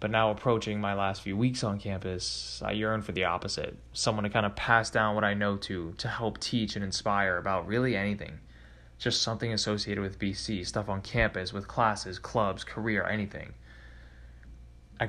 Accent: American